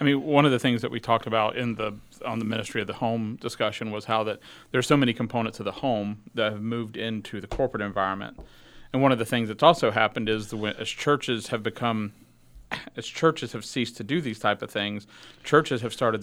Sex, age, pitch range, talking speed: male, 40-59, 110-140 Hz, 235 wpm